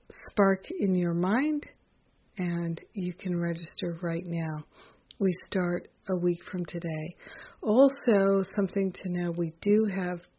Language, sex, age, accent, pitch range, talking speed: English, female, 50-69, American, 175-200 Hz, 135 wpm